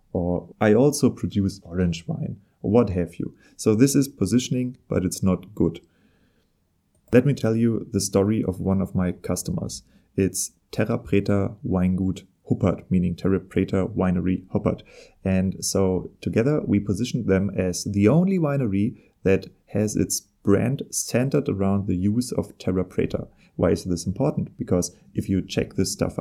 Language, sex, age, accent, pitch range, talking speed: English, male, 30-49, German, 95-110 Hz, 160 wpm